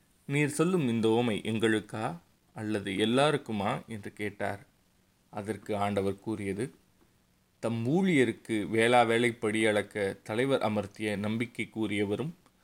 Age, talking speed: 20-39, 105 wpm